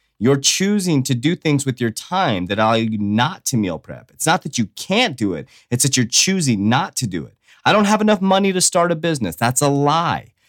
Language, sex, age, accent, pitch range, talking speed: English, male, 30-49, American, 115-160 Hz, 235 wpm